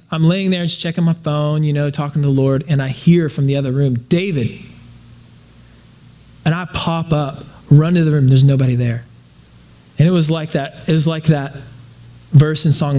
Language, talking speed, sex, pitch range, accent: English, 205 wpm, male, 130-170 Hz, American